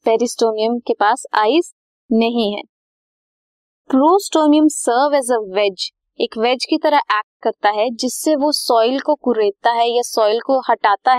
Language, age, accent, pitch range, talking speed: Hindi, 20-39, native, 225-290 Hz, 150 wpm